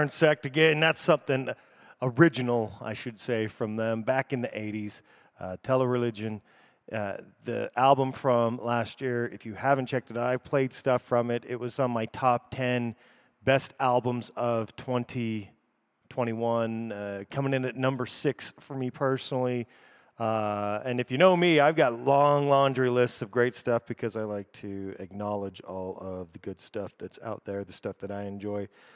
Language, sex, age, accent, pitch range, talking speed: English, male, 30-49, American, 110-130 Hz, 175 wpm